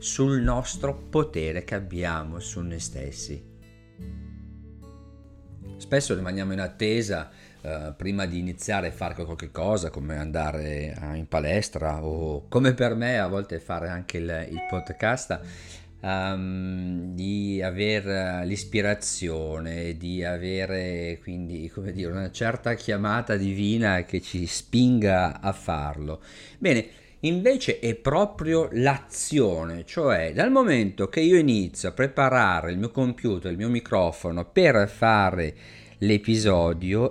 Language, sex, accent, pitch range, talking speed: Italian, male, native, 85-110 Hz, 120 wpm